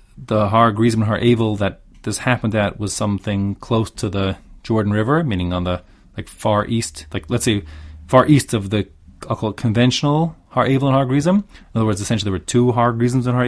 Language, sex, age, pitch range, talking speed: English, male, 30-49, 100-120 Hz, 225 wpm